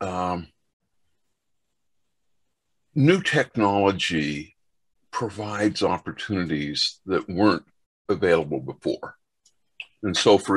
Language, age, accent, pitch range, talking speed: English, 60-79, American, 95-120 Hz, 70 wpm